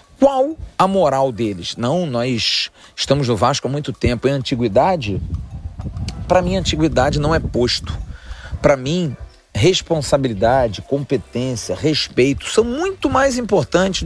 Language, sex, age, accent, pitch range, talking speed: Portuguese, male, 40-59, Brazilian, 100-145 Hz, 130 wpm